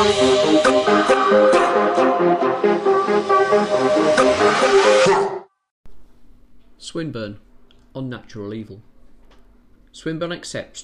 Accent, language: British, English